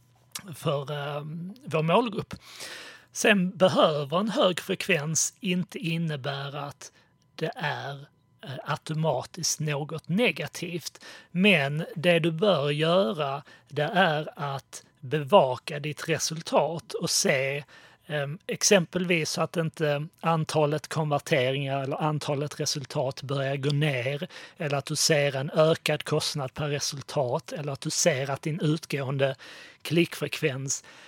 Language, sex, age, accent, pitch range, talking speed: Swedish, male, 30-49, native, 145-170 Hz, 110 wpm